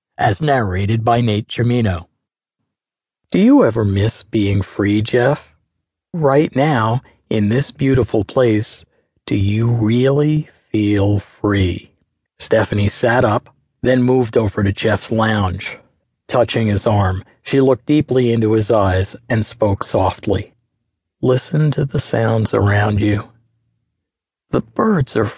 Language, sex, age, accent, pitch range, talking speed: English, male, 50-69, American, 105-130 Hz, 125 wpm